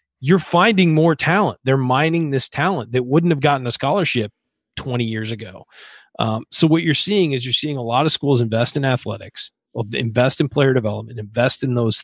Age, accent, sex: 30-49, American, male